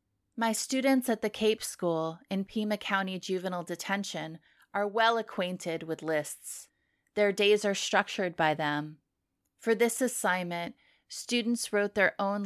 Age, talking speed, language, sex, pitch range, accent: 30-49, 140 wpm, English, female, 160-205 Hz, American